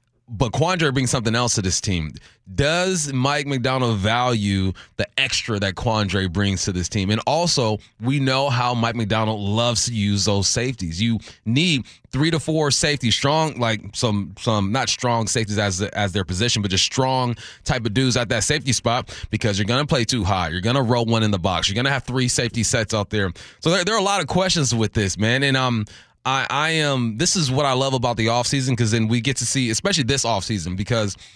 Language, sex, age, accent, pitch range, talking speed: English, male, 20-39, American, 105-135 Hz, 220 wpm